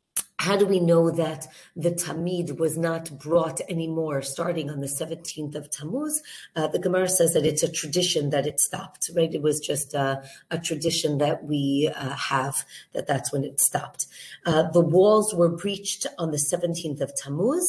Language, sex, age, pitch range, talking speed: English, female, 40-59, 150-175 Hz, 185 wpm